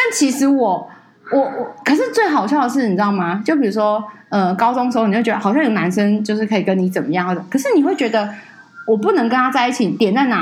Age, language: 20-39, Chinese